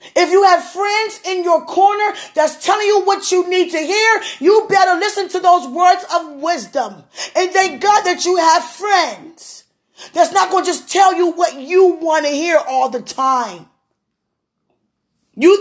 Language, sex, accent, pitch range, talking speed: English, female, American, 280-355 Hz, 175 wpm